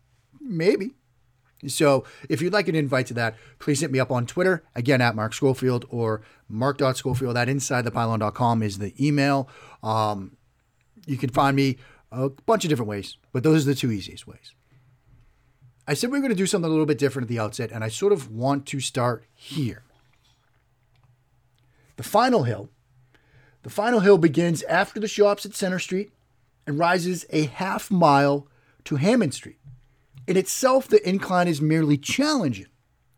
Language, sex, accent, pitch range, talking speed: English, male, American, 125-165 Hz, 175 wpm